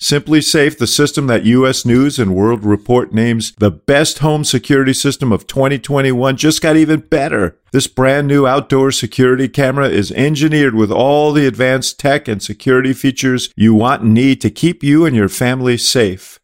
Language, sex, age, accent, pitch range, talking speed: English, male, 50-69, American, 110-140 Hz, 180 wpm